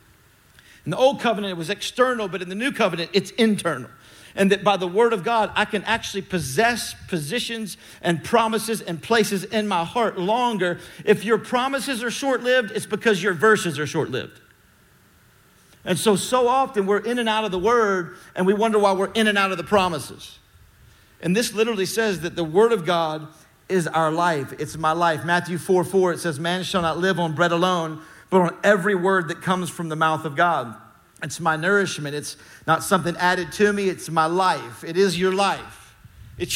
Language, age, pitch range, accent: English, 50-69, 165-210 Hz, American